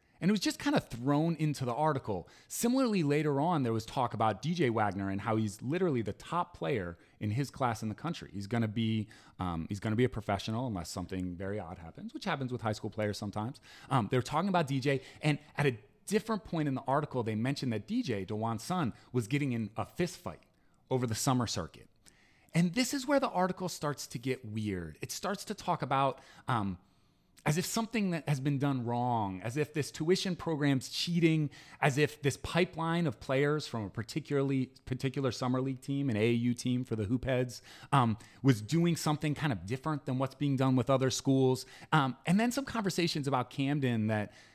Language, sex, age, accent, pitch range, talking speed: English, male, 30-49, American, 110-155 Hz, 205 wpm